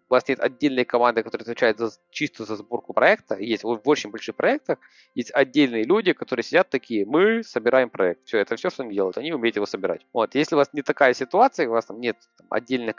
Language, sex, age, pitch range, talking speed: Ukrainian, male, 20-39, 110-145 Hz, 230 wpm